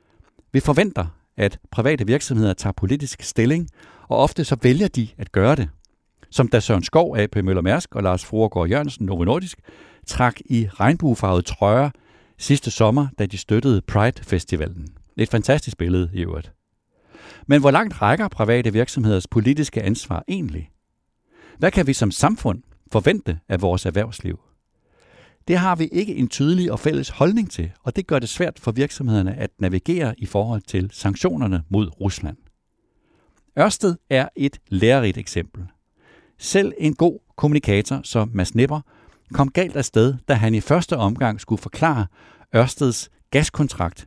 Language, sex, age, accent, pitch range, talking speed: Danish, male, 60-79, native, 100-140 Hz, 150 wpm